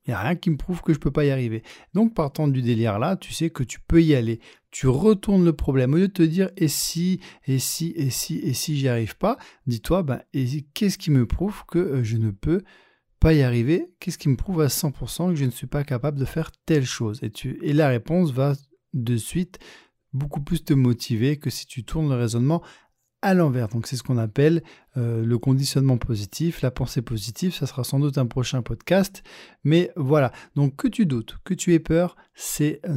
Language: French